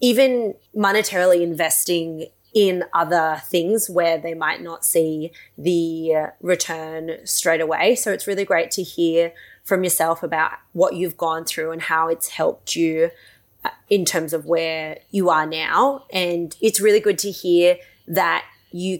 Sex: female